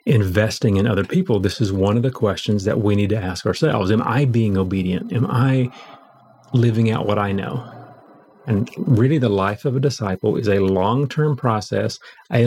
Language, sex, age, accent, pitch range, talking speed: English, male, 40-59, American, 100-130 Hz, 190 wpm